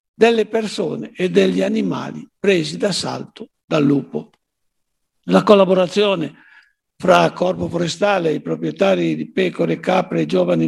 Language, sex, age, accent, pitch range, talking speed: Italian, male, 60-79, native, 140-210 Hz, 120 wpm